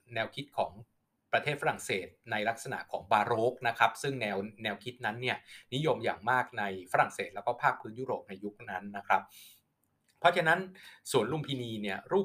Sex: male